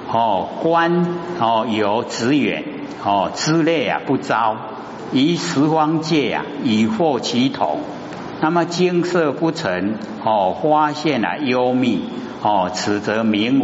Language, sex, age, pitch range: Chinese, male, 50-69, 105-155 Hz